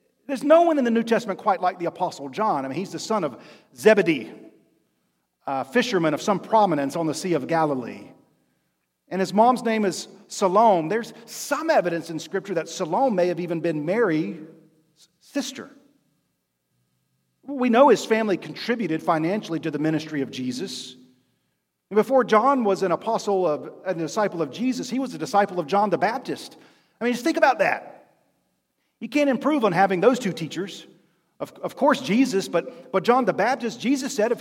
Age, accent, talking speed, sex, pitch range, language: 40-59, American, 180 wpm, male, 165-230 Hz, English